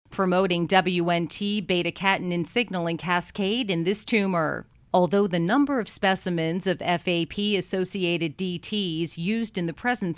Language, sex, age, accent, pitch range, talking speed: English, female, 40-59, American, 170-205 Hz, 120 wpm